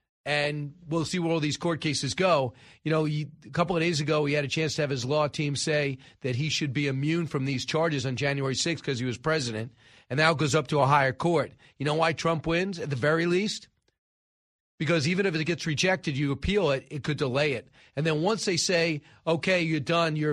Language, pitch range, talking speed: English, 140-175 Hz, 240 wpm